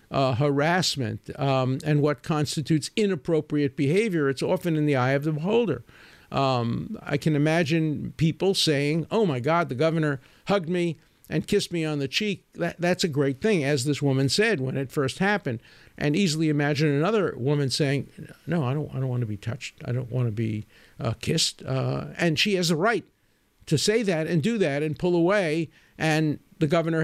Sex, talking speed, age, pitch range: male, 195 wpm, 50-69, 135-180 Hz